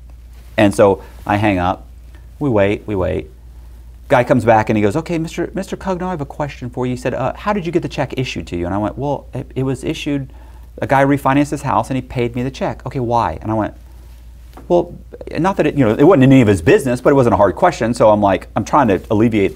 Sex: male